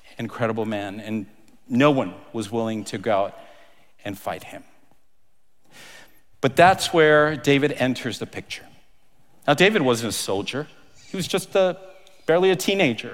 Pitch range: 135-180 Hz